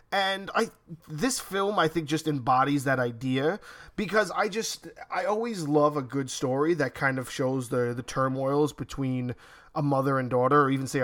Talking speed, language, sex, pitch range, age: 185 wpm, English, male, 130-165 Hz, 20-39